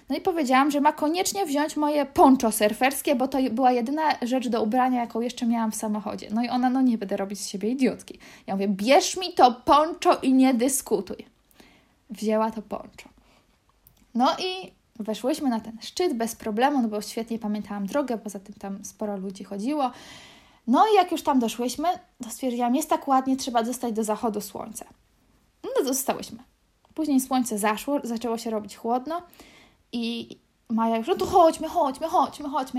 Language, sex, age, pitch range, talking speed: Polish, female, 20-39, 230-300 Hz, 180 wpm